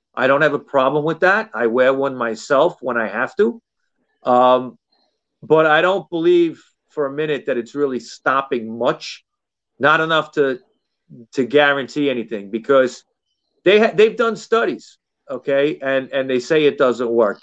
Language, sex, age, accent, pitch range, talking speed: English, male, 40-59, American, 125-190 Hz, 165 wpm